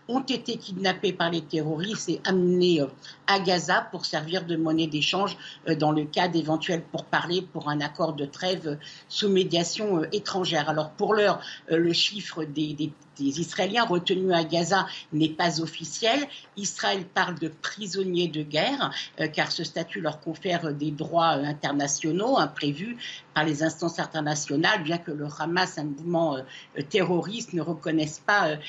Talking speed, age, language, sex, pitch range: 155 wpm, 60-79, French, female, 155-190 Hz